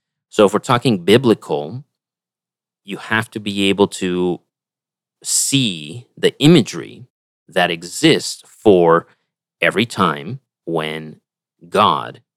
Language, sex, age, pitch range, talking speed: English, male, 30-49, 90-115 Hz, 100 wpm